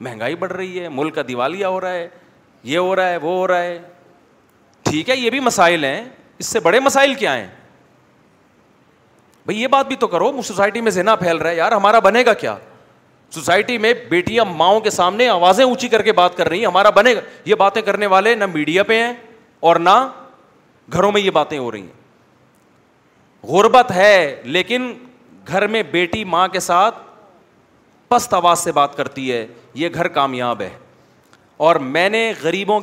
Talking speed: 190 wpm